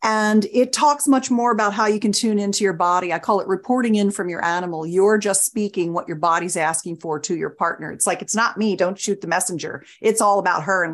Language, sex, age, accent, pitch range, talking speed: English, female, 40-59, American, 180-225 Hz, 250 wpm